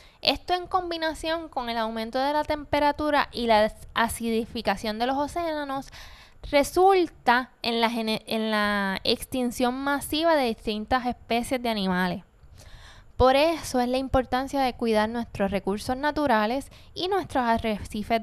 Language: Spanish